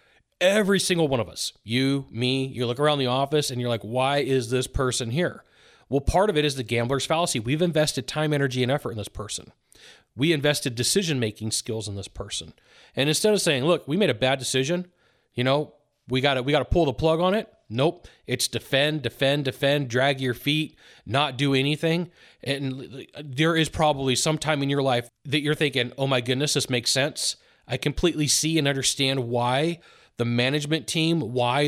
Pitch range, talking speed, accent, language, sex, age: 125-155 Hz, 200 wpm, American, English, male, 30-49